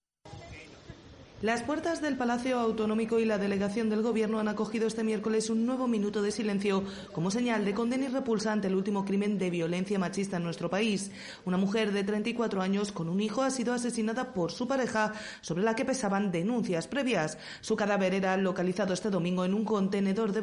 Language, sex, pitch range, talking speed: Spanish, female, 175-220 Hz, 190 wpm